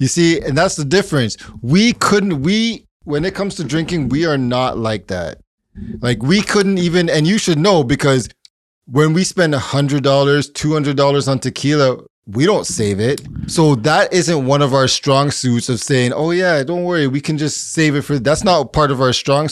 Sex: male